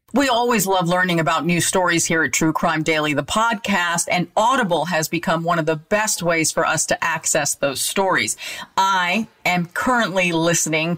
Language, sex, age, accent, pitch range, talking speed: English, female, 50-69, American, 170-230 Hz, 185 wpm